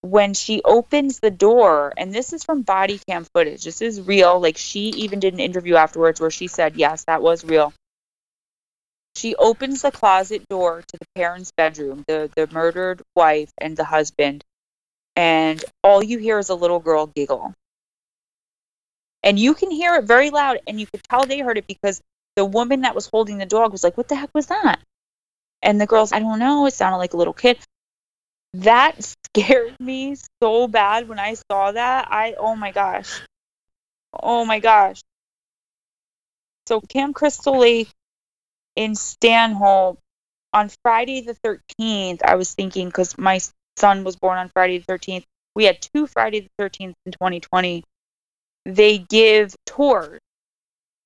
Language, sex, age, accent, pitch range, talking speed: English, female, 20-39, American, 180-230 Hz, 170 wpm